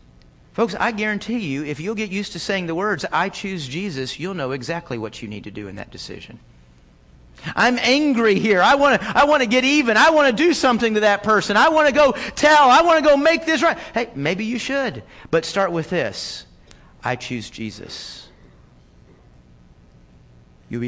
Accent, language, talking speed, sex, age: American, English, 195 wpm, male, 40-59